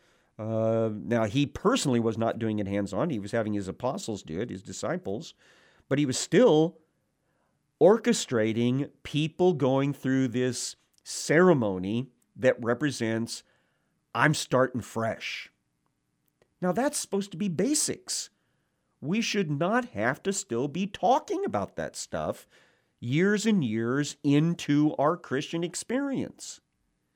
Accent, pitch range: American, 115-155 Hz